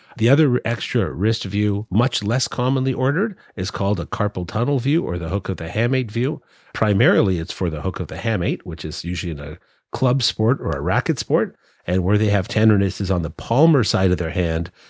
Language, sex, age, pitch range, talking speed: English, male, 40-59, 90-120 Hz, 220 wpm